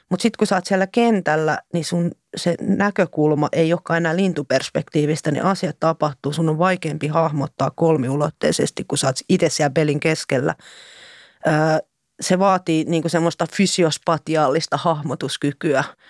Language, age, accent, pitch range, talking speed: Finnish, 30-49, native, 150-175 Hz, 135 wpm